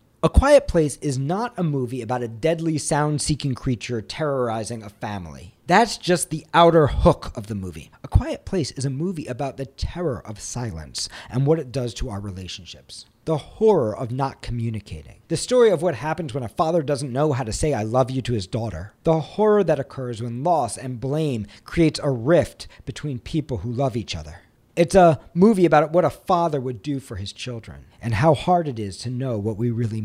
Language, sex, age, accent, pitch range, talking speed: English, male, 40-59, American, 115-160 Hz, 210 wpm